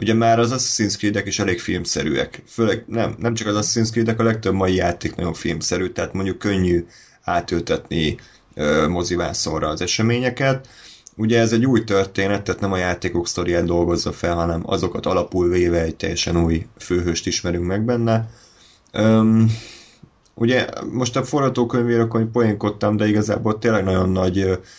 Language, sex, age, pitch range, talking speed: Hungarian, male, 30-49, 90-110 Hz, 155 wpm